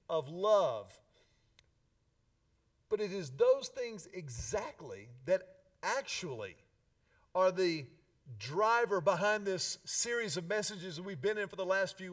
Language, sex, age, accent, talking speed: English, male, 50-69, American, 130 wpm